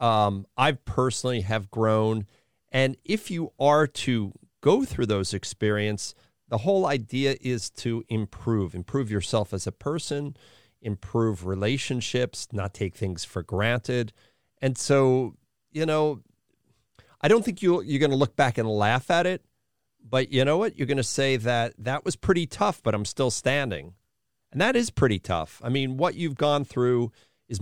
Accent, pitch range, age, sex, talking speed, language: American, 105-135 Hz, 40-59, male, 165 wpm, English